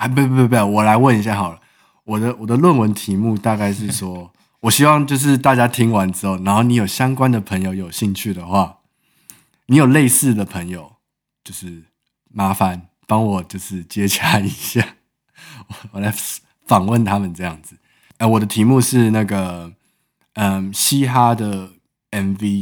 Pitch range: 95-115 Hz